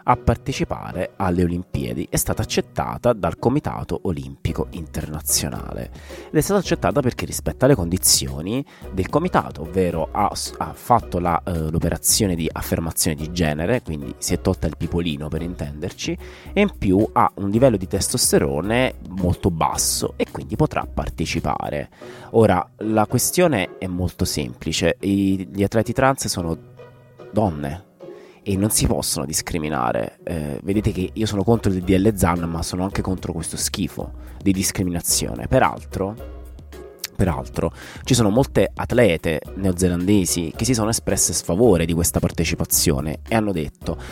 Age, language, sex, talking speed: 30-49, Italian, male, 145 wpm